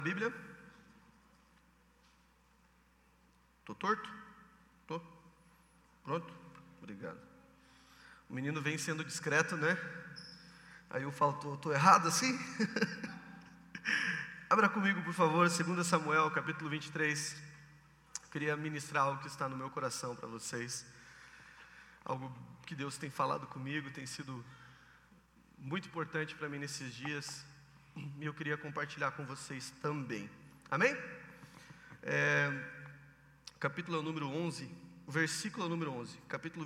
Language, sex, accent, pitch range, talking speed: Portuguese, male, Brazilian, 145-175 Hz, 110 wpm